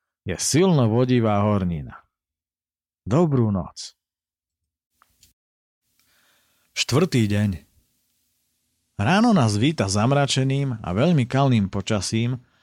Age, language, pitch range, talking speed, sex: 40-59, Slovak, 100-135 Hz, 75 wpm, male